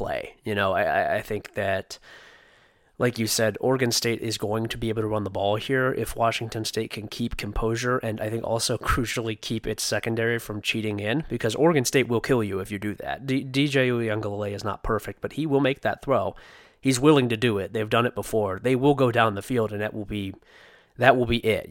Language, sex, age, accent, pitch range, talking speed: English, male, 20-39, American, 105-130 Hz, 230 wpm